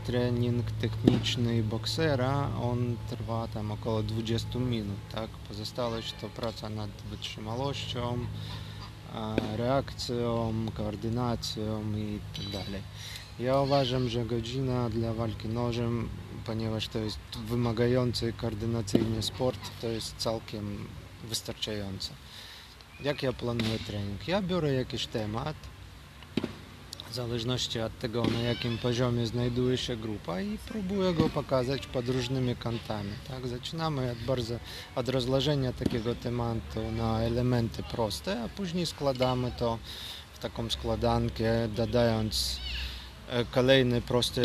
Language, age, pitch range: Polish, 20-39, 110-125 Hz